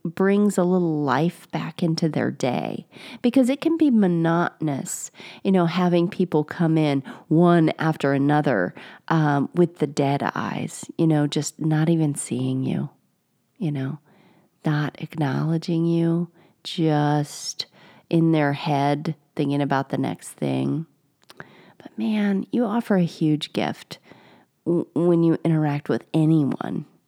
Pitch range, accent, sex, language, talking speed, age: 160-215 Hz, American, female, English, 135 wpm, 40-59